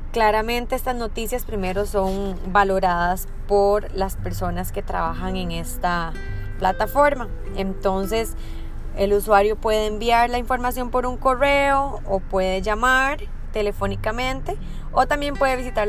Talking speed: 120 wpm